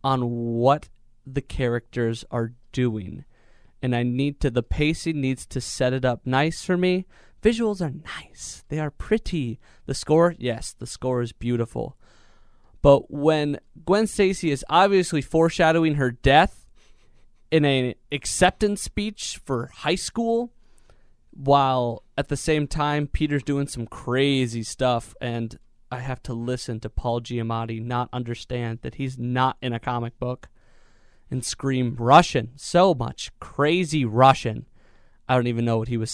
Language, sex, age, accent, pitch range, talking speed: English, male, 20-39, American, 120-155 Hz, 150 wpm